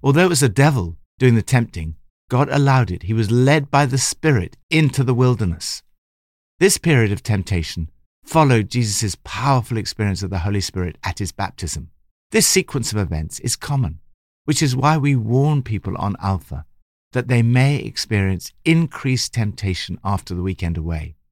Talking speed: 165 wpm